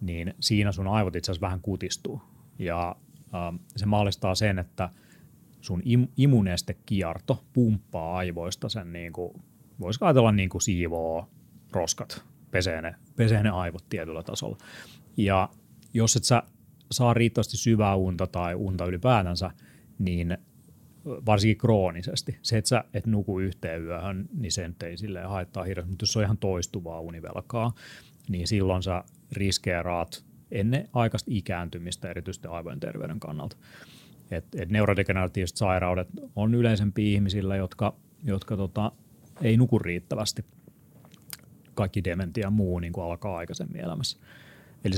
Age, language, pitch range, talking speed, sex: 30-49, Finnish, 90-115 Hz, 135 wpm, male